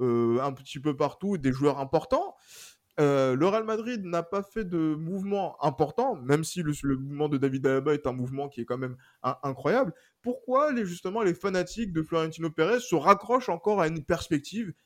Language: French